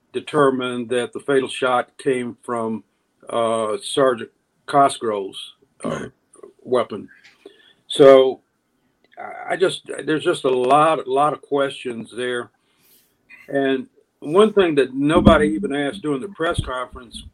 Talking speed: 120 wpm